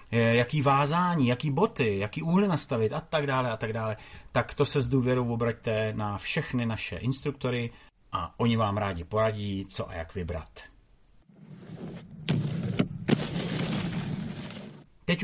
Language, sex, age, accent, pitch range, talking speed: Czech, male, 30-49, native, 110-145 Hz, 125 wpm